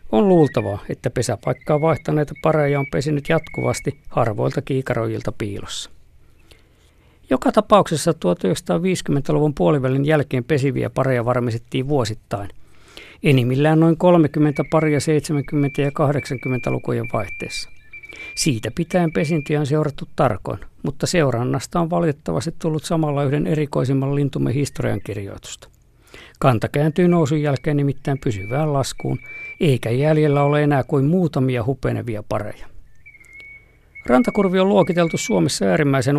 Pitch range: 125-155 Hz